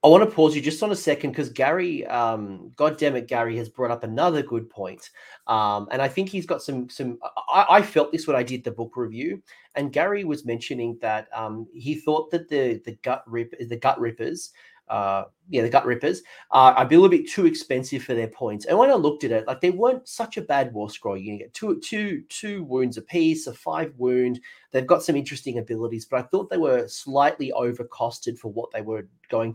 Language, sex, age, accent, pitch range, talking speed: English, male, 30-49, Australian, 115-155 Hz, 230 wpm